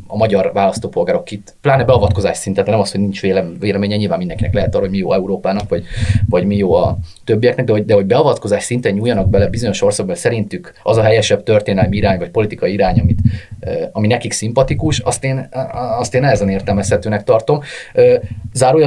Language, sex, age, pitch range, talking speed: Hungarian, male, 30-49, 105-145 Hz, 190 wpm